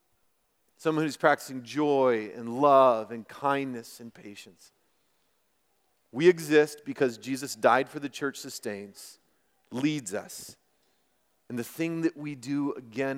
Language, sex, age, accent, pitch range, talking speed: English, male, 40-59, American, 110-135 Hz, 125 wpm